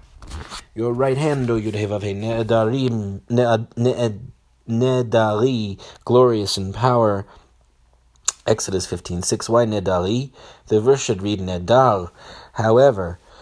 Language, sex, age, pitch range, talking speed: English, male, 30-49, 100-120 Hz, 110 wpm